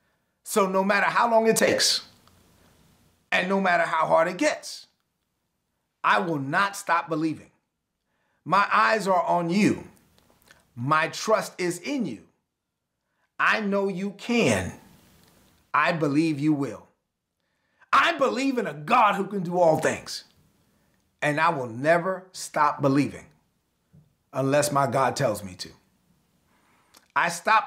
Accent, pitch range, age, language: American, 150-200 Hz, 30-49, English